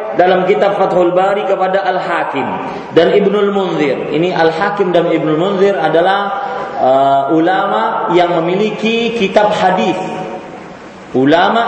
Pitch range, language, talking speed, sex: 165-200 Hz, Malay, 115 wpm, male